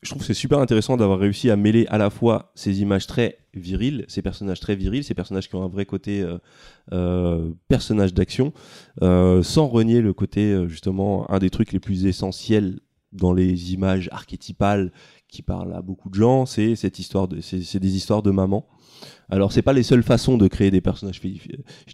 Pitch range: 95-110 Hz